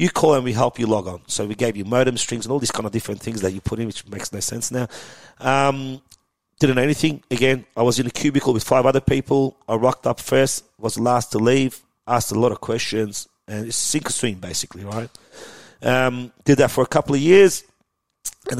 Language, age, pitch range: English, 30-49, 110-140 Hz